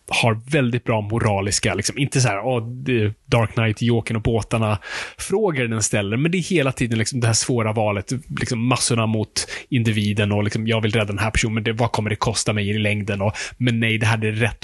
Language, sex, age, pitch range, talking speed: Swedish, male, 20-39, 105-125 Hz, 225 wpm